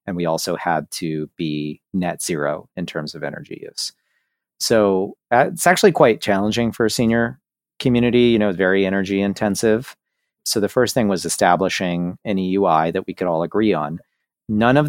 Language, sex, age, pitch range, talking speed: English, male, 40-59, 80-105 Hz, 175 wpm